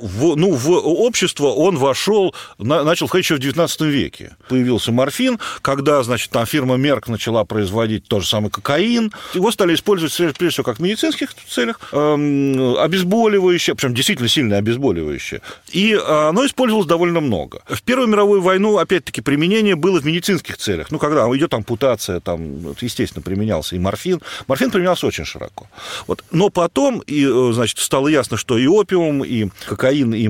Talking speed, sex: 160 wpm, male